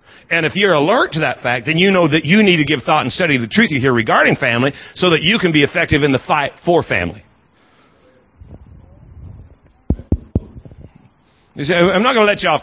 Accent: American